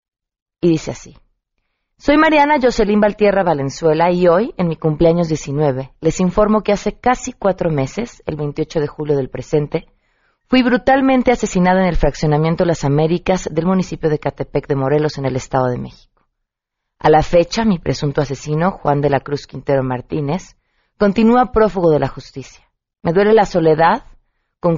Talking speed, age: 165 wpm, 30-49